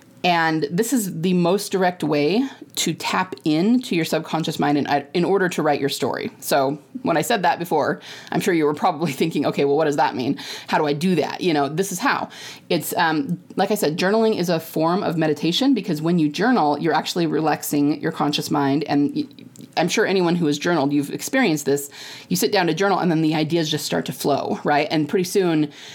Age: 30-49